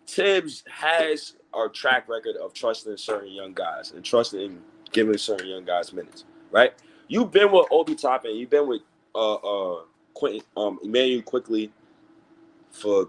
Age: 30-49